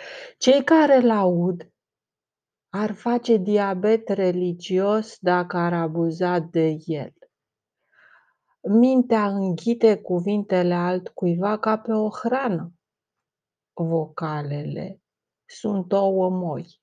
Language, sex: Romanian, female